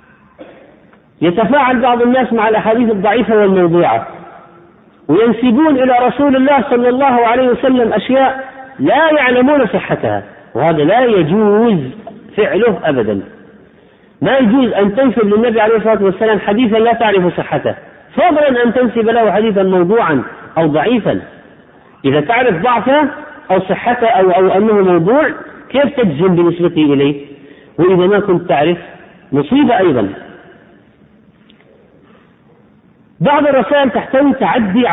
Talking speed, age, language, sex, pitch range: 115 wpm, 50-69, Arabic, male, 190-255 Hz